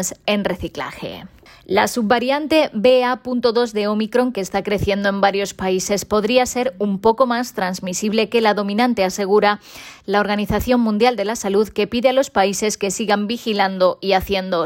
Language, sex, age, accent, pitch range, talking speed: Spanish, female, 20-39, Spanish, 190-220 Hz, 160 wpm